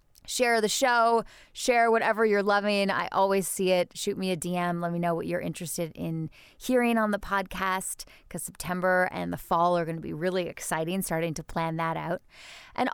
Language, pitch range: English, 180-230 Hz